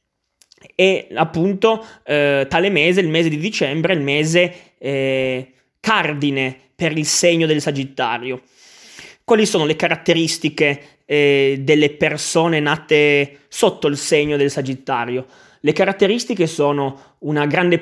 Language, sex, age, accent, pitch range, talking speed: Italian, male, 20-39, native, 140-170 Hz, 120 wpm